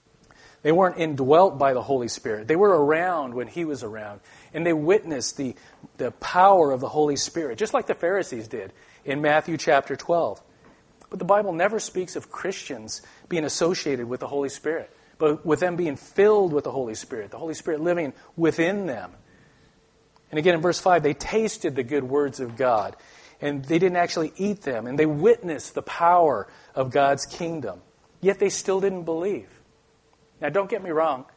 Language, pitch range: English, 140-175 Hz